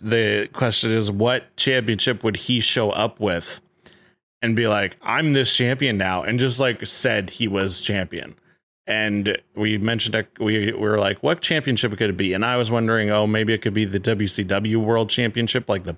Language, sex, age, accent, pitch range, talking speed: English, male, 30-49, American, 95-115 Hz, 195 wpm